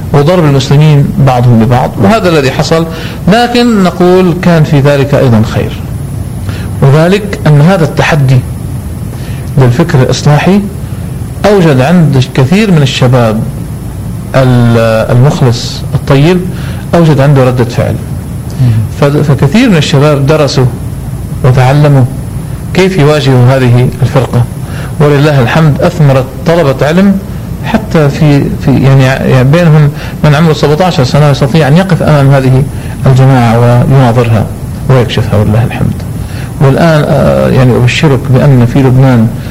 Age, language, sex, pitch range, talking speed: 50-69, Arabic, male, 125-155 Hz, 110 wpm